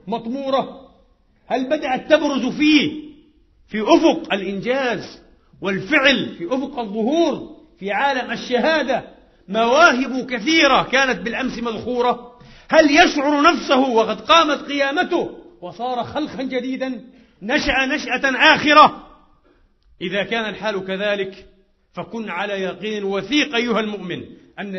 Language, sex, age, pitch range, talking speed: Arabic, male, 50-69, 185-270 Hz, 105 wpm